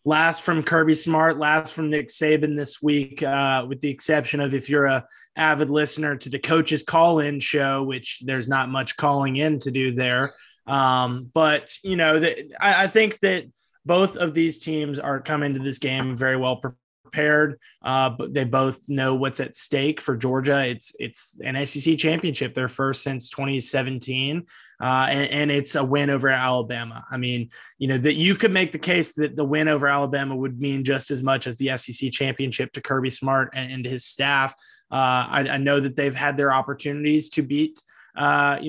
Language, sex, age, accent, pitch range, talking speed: English, male, 20-39, American, 135-155 Hz, 195 wpm